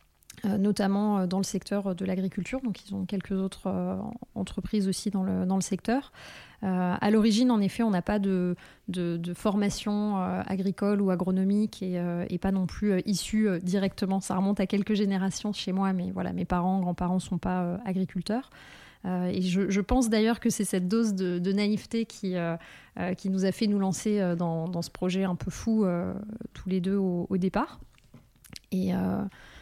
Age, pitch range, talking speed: 20-39, 180-205 Hz, 180 wpm